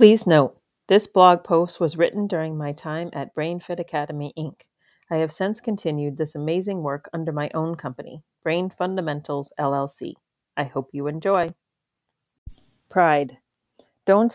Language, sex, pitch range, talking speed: English, female, 150-185 Hz, 140 wpm